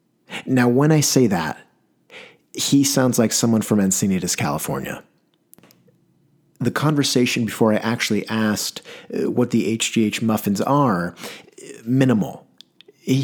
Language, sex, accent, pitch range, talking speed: English, male, American, 110-130 Hz, 115 wpm